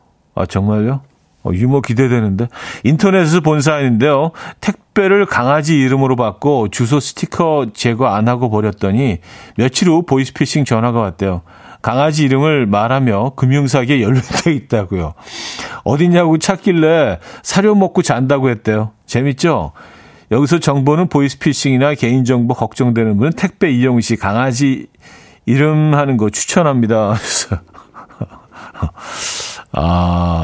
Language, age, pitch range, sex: Korean, 40-59, 110-155 Hz, male